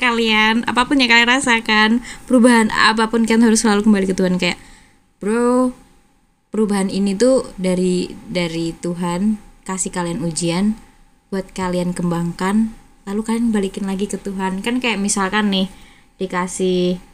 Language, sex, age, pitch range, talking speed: Indonesian, female, 20-39, 190-245 Hz, 135 wpm